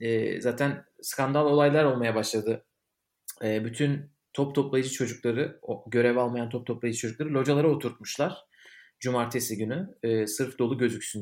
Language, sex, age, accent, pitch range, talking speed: Turkish, male, 40-59, native, 120-145 Hz, 130 wpm